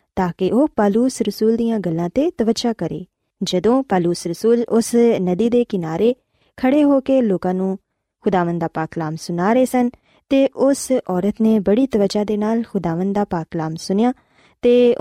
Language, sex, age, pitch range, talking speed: Punjabi, female, 20-39, 180-250 Hz, 170 wpm